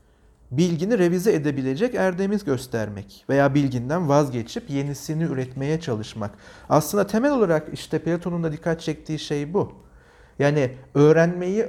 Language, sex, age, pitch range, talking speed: Turkish, male, 40-59, 135-195 Hz, 120 wpm